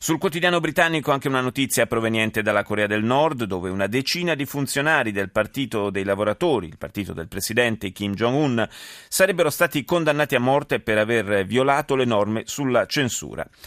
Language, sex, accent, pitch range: Italian, male, native, 100-140 Hz